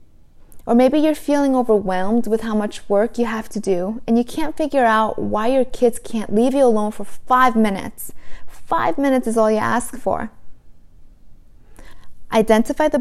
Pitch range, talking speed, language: 205-250 Hz, 170 wpm, English